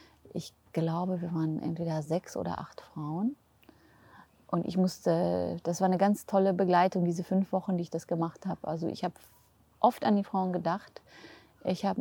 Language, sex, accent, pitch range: German, female, German, 165-190 Hz